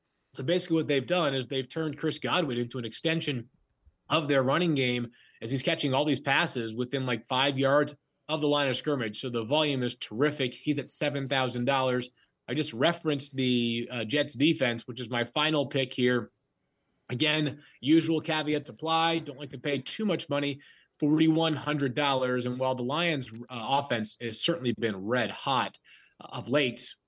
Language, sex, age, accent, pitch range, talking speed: English, male, 30-49, American, 120-150 Hz, 175 wpm